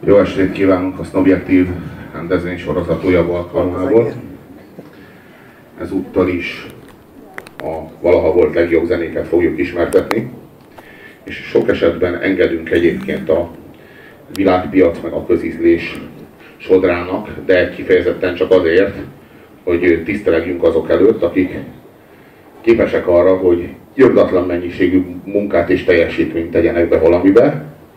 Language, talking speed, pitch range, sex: Hungarian, 100 wpm, 90-120 Hz, male